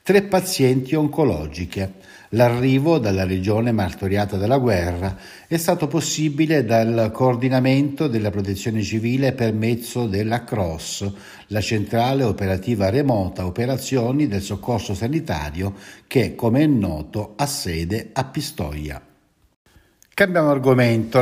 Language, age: Italian, 60-79